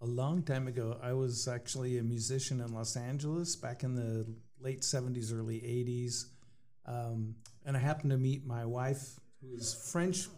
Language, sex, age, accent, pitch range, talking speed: English, male, 40-59, American, 120-140 Hz, 175 wpm